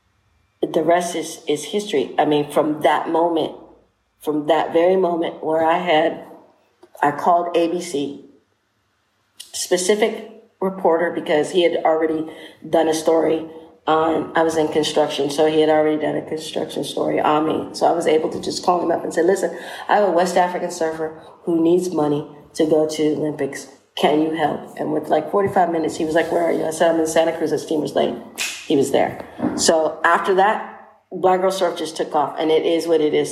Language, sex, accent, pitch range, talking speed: English, female, American, 155-180 Hz, 200 wpm